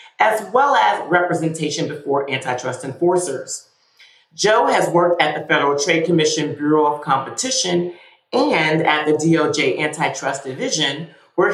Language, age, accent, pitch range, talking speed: English, 40-59, American, 155-215 Hz, 130 wpm